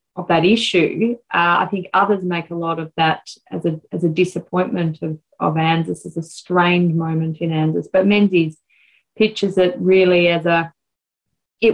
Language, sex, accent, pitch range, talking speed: English, female, Australian, 175-195 Hz, 175 wpm